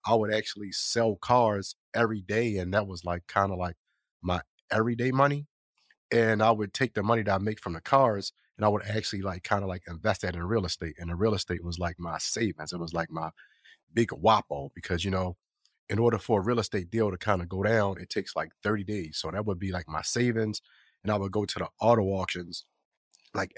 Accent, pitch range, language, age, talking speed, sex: American, 95-110 Hz, English, 30-49, 235 wpm, male